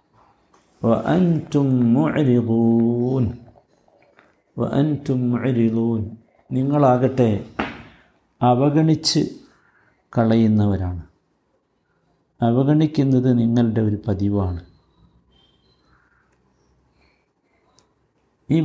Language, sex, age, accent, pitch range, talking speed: Malayalam, male, 50-69, native, 115-135 Hz, 30 wpm